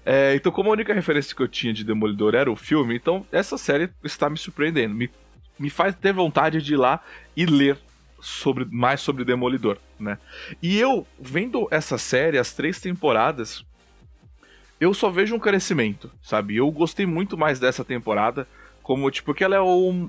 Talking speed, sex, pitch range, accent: 175 wpm, male, 120-170 Hz, Brazilian